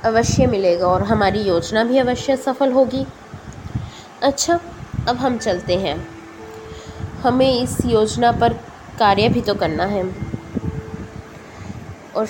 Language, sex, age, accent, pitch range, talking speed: Hindi, female, 20-39, native, 210-260 Hz, 115 wpm